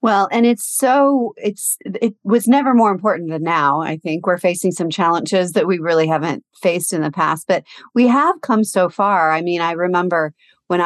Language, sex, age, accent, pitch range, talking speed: English, female, 40-59, American, 170-225 Hz, 205 wpm